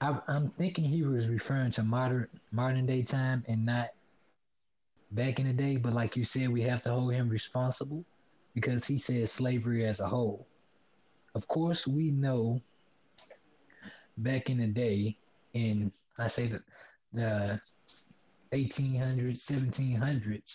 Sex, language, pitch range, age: male, English, 115-135 Hz, 20-39